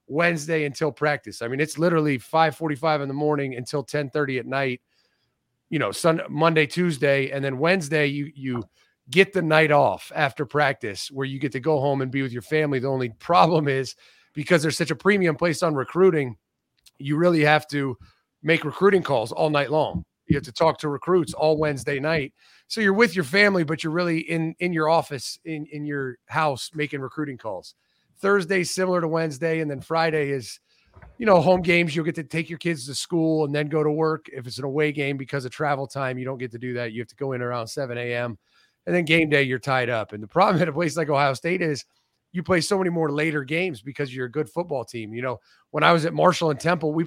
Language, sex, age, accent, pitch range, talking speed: English, male, 30-49, American, 140-165 Hz, 230 wpm